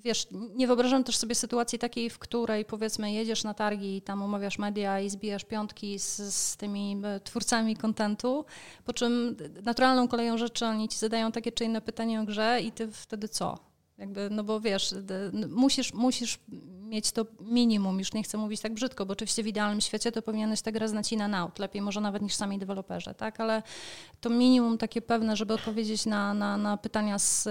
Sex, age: female, 30-49